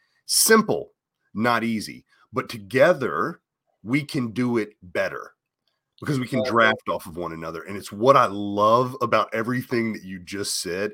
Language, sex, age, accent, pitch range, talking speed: English, male, 30-49, American, 105-145 Hz, 160 wpm